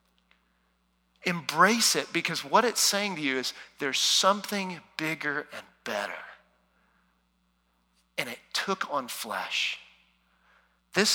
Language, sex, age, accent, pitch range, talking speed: English, male, 40-59, American, 145-215 Hz, 110 wpm